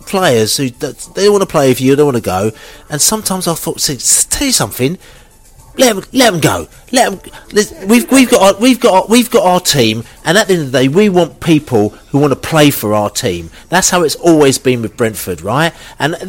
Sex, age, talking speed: male, 40-59, 245 wpm